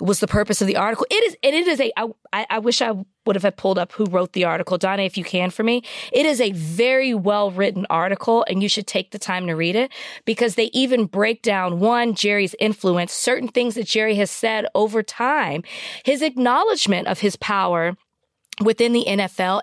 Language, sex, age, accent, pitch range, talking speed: English, female, 20-39, American, 185-235 Hz, 210 wpm